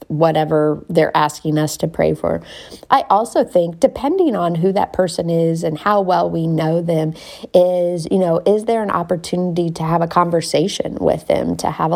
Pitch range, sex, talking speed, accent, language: 155-180 Hz, female, 185 wpm, American, English